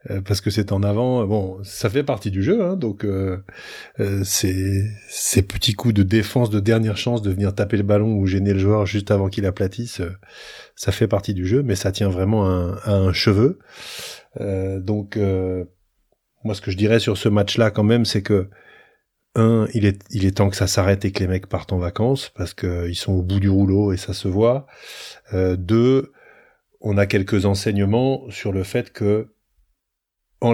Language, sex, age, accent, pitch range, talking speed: French, male, 30-49, French, 95-110 Hz, 200 wpm